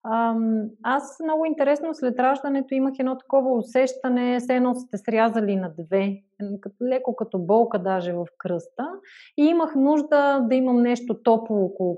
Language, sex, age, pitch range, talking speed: Bulgarian, female, 30-49, 210-270 Hz, 145 wpm